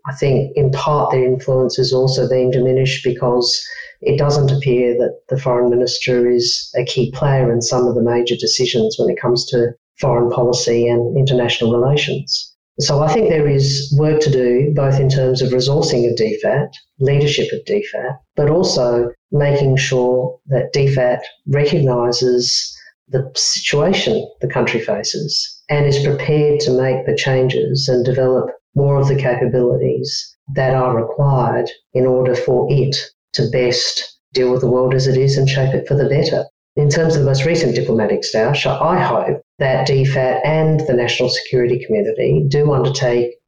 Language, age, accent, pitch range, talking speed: English, 40-59, Australian, 125-145 Hz, 165 wpm